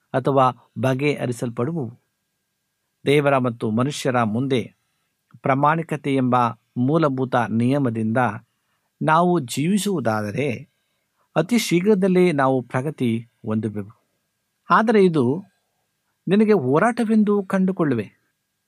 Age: 60-79